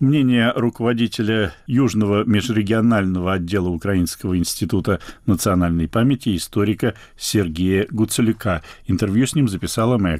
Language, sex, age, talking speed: Russian, male, 50-69, 100 wpm